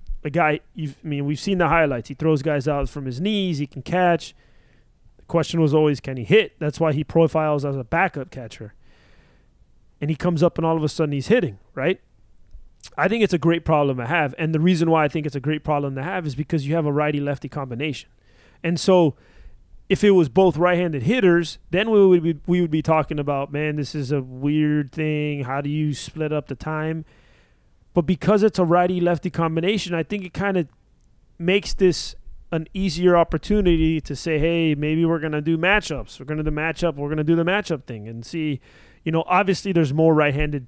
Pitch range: 145-175 Hz